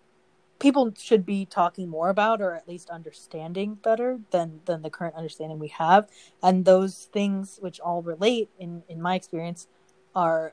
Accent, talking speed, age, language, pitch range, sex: American, 165 wpm, 20-39, English, 170-200 Hz, female